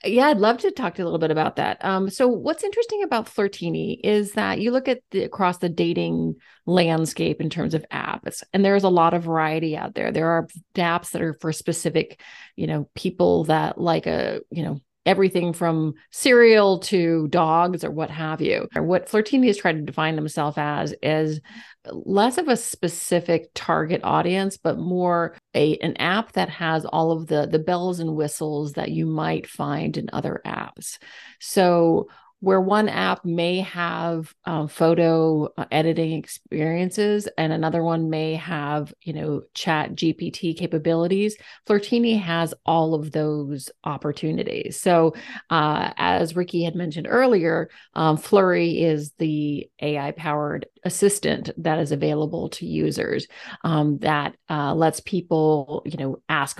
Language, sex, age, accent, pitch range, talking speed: English, female, 30-49, American, 155-185 Hz, 160 wpm